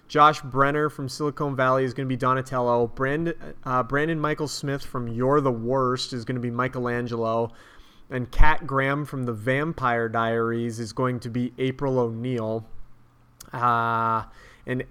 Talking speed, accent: 155 wpm, American